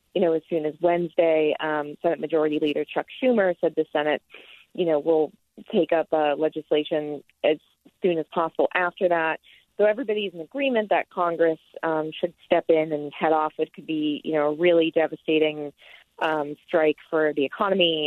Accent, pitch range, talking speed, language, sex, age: American, 150-175 Hz, 180 wpm, English, female, 30-49